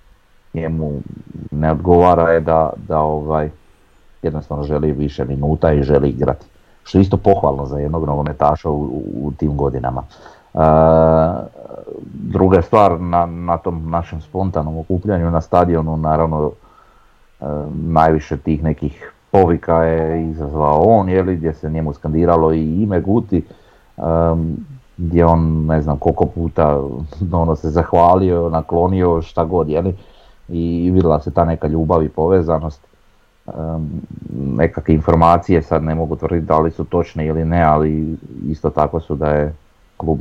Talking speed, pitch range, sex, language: 140 wpm, 75-85 Hz, male, Croatian